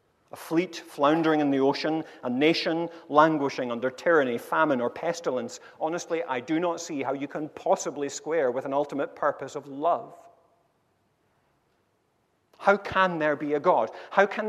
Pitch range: 135-175 Hz